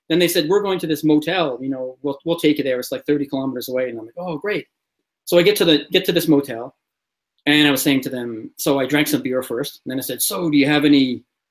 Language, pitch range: English, 135-165 Hz